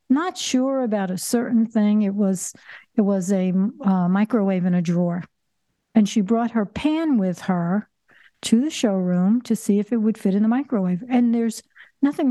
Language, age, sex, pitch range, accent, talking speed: English, 60-79, female, 195-240 Hz, American, 185 wpm